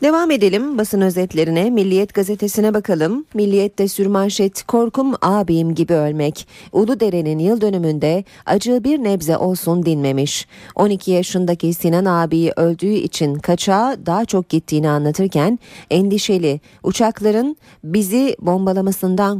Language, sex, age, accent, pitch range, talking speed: Turkish, female, 40-59, native, 155-200 Hz, 115 wpm